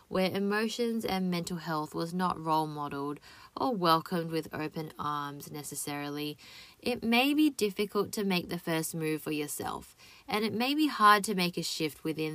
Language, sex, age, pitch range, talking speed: English, female, 20-39, 160-210 Hz, 175 wpm